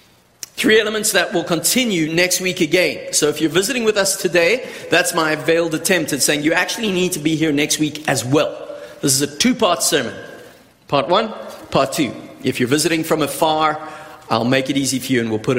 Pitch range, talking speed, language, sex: 135-200 Hz, 210 wpm, English, male